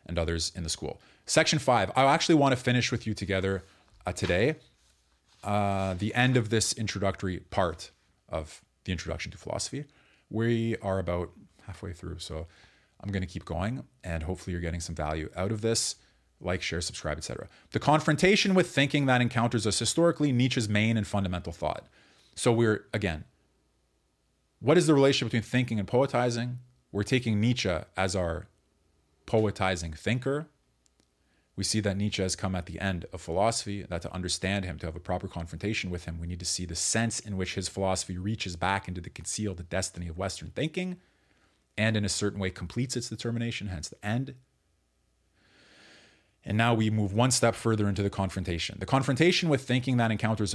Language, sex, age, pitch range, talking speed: English, male, 30-49, 90-120 Hz, 180 wpm